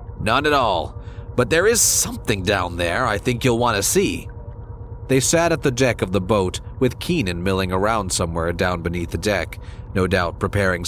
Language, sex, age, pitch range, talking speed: English, male, 40-59, 95-110 Hz, 195 wpm